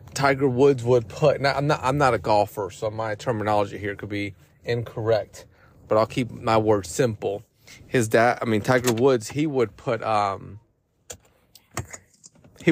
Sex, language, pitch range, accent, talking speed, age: male, English, 110-140 Hz, American, 165 wpm, 30-49